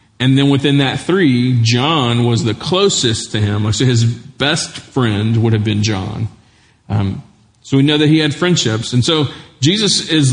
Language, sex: English, male